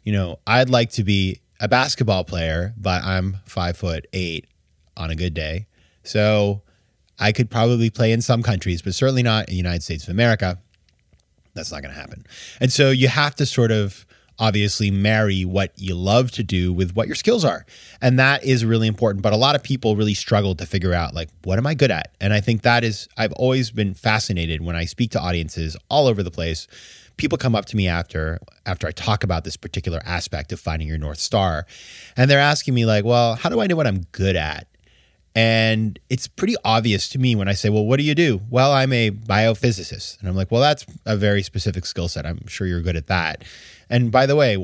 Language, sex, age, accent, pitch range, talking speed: English, male, 20-39, American, 95-120 Hz, 225 wpm